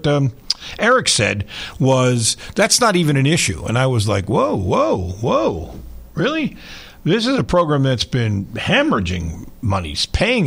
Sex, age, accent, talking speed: male, 50-69, American, 150 wpm